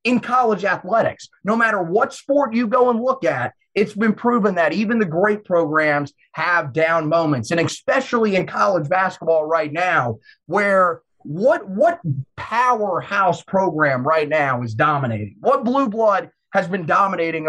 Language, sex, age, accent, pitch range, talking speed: English, male, 30-49, American, 170-235 Hz, 155 wpm